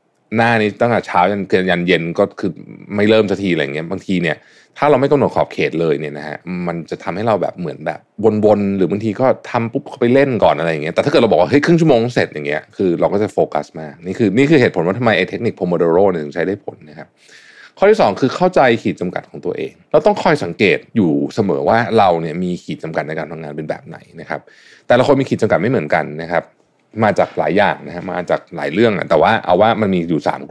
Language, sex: Thai, male